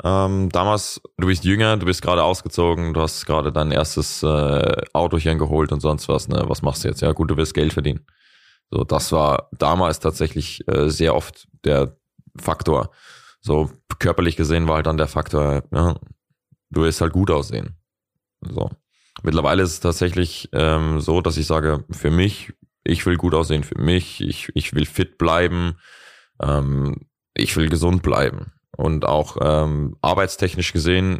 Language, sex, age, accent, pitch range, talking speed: German, male, 20-39, German, 75-90 Hz, 170 wpm